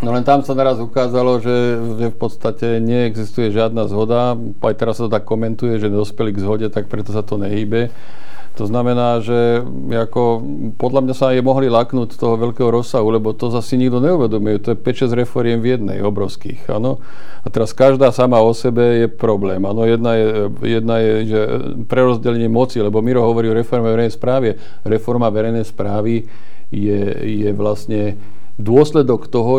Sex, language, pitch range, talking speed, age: male, Slovak, 110-125 Hz, 170 wpm, 50-69